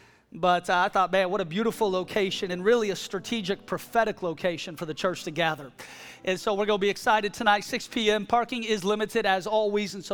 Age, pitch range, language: 40-59, 190-225 Hz, English